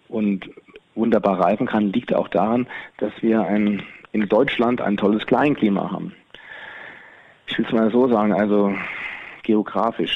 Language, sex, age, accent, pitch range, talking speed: German, male, 40-59, German, 105-135 Hz, 140 wpm